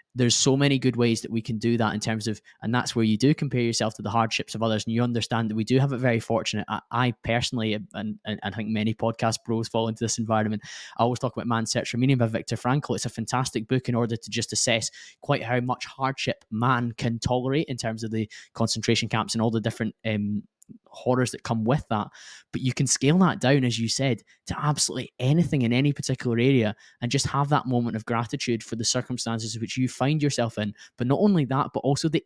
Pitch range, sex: 115-130 Hz, male